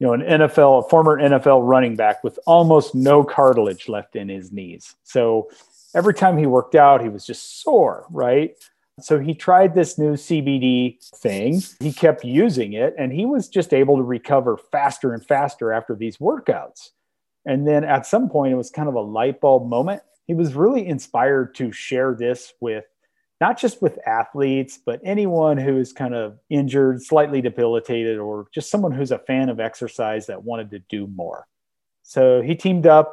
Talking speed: 185 wpm